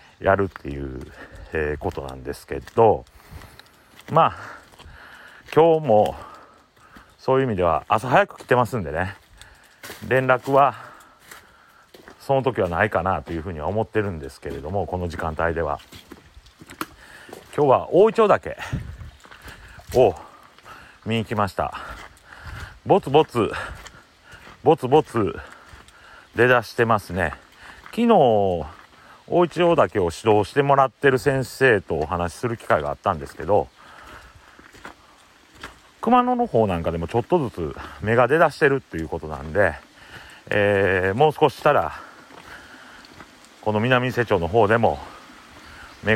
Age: 40-59